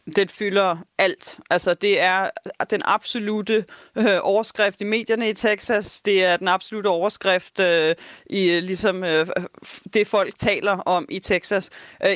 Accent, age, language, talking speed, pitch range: native, 30-49, Danish, 155 wpm, 185-220 Hz